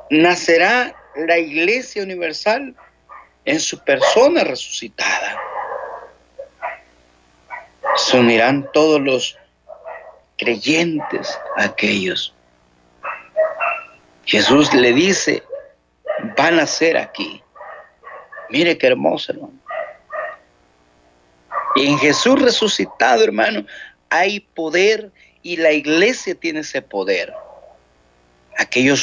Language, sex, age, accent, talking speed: Spanish, male, 50-69, Mexican, 85 wpm